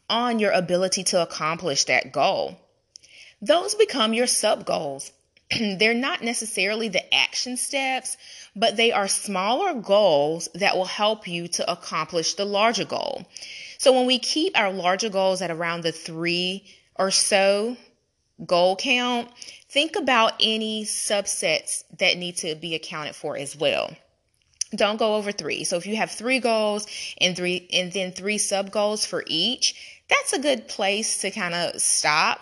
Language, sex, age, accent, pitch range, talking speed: English, female, 30-49, American, 180-235 Hz, 155 wpm